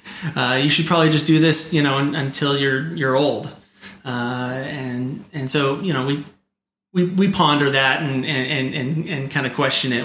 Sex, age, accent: male, 30-49, American